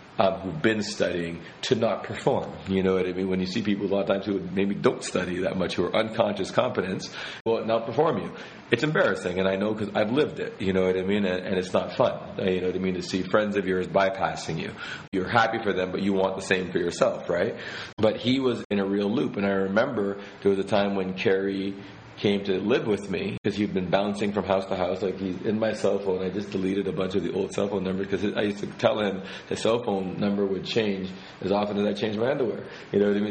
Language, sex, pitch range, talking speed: English, male, 95-105 Hz, 265 wpm